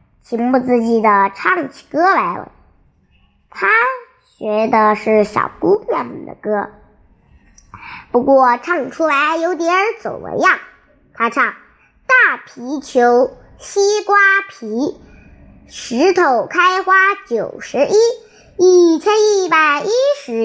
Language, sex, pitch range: Chinese, male, 270-415 Hz